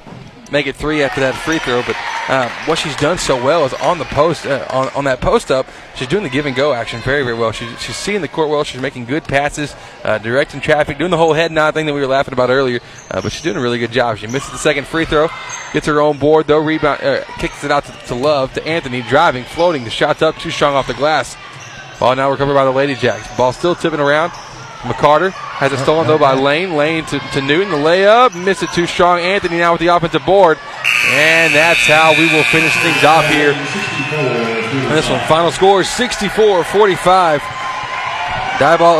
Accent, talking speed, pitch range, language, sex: American, 230 wpm, 140-170 Hz, English, male